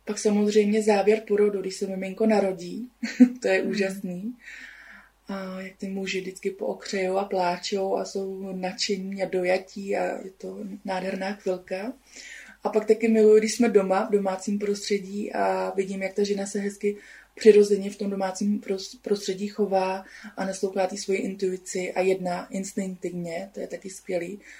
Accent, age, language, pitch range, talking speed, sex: native, 20-39, Czech, 185-205 Hz, 155 wpm, female